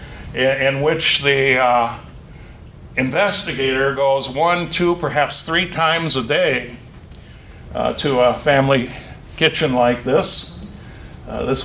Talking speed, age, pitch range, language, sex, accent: 115 wpm, 60-79, 115-155 Hz, English, male, American